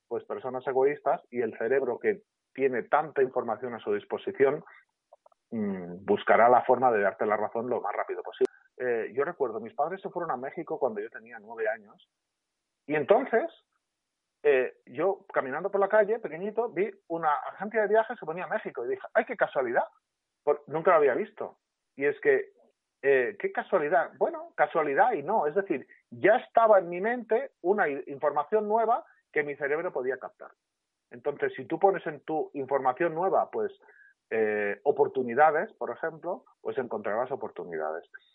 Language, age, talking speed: Spanish, 40-59, 165 wpm